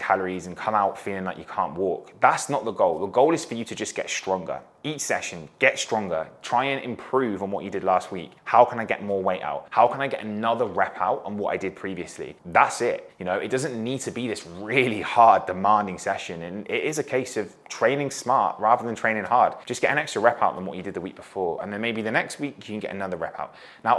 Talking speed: 270 wpm